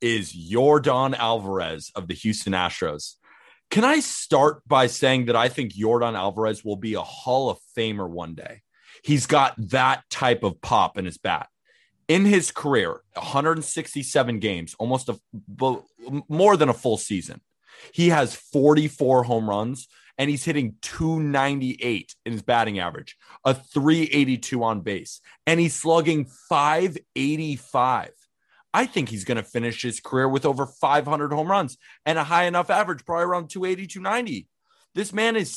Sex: male